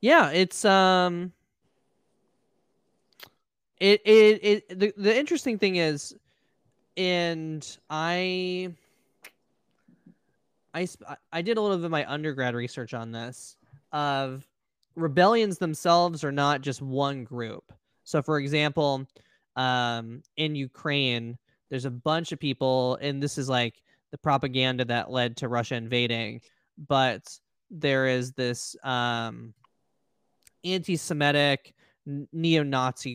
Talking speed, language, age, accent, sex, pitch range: 110 wpm, English, 20-39, American, male, 125-165 Hz